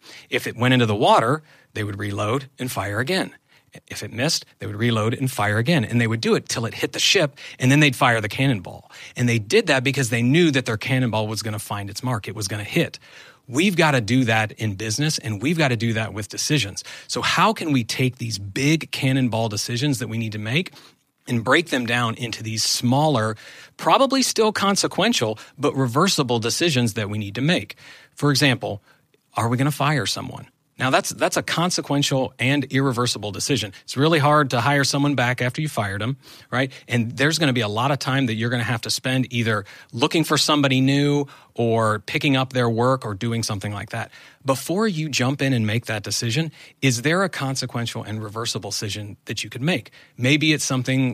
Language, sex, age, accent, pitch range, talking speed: English, male, 40-59, American, 110-145 Hz, 220 wpm